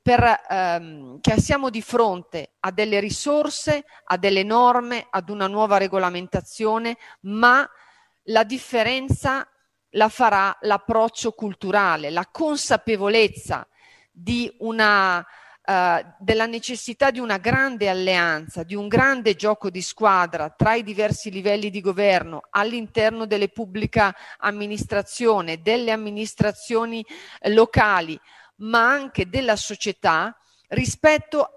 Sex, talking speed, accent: female, 110 wpm, native